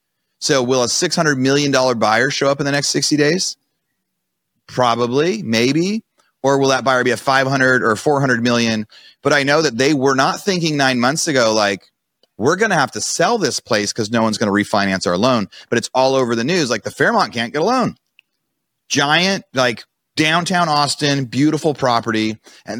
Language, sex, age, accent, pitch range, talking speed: English, male, 30-49, American, 115-145 Hz, 190 wpm